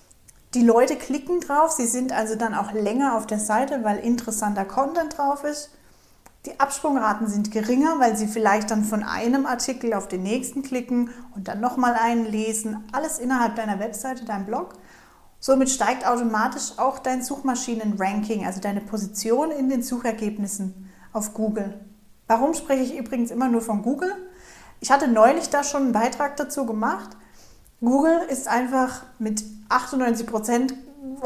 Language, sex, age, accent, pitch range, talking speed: German, female, 30-49, German, 215-265 Hz, 155 wpm